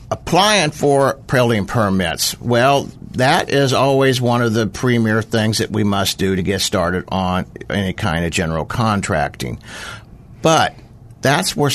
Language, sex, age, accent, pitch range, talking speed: English, male, 60-79, American, 100-130 Hz, 150 wpm